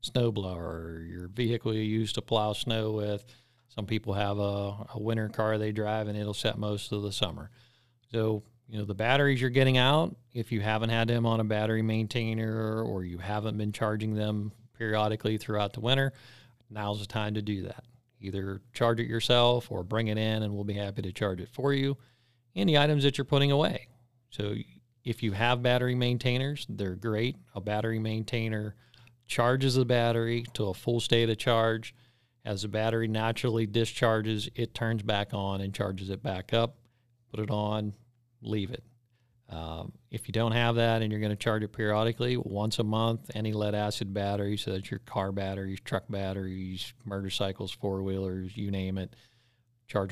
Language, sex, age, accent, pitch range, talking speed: English, male, 40-59, American, 105-120 Hz, 185 wpm